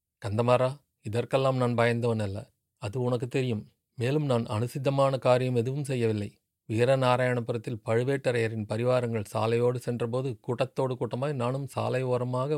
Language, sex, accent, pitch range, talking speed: Tamil, male, native, 115-130 Hz, 110 wpm